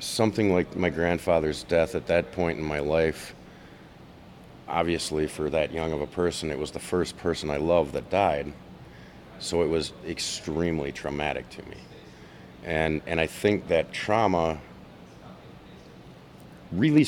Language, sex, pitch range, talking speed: English, male, 75-90 Hz, 145 wpm